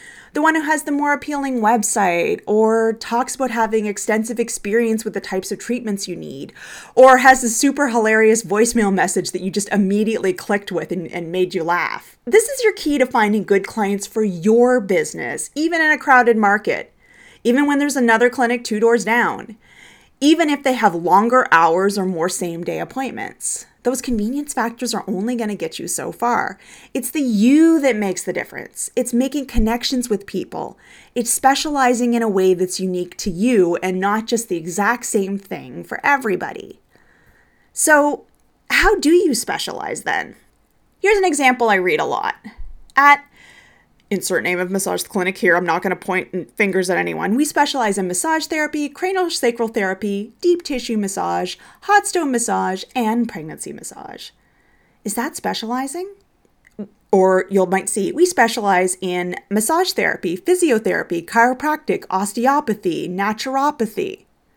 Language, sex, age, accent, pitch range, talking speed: English, female, 30-49, American, 195-275 Hz, 165 wpm